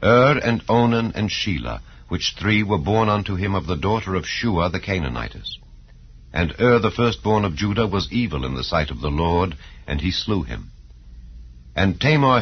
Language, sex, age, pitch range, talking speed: English, male, 60-79, 75-110 Hz, 195 wpm